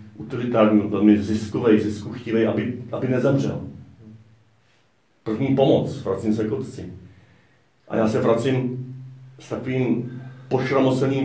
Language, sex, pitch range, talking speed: Czech, male, 100-115 Hz, 110 wpm